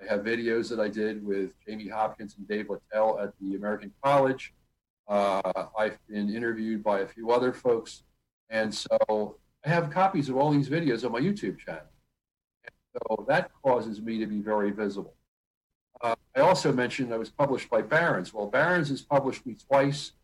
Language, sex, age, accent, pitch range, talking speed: English, male, 50-69, American, 110-140 Hz, 185 wpm